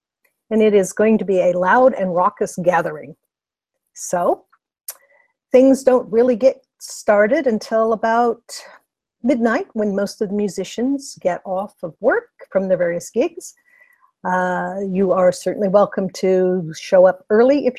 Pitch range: 190-250 Hz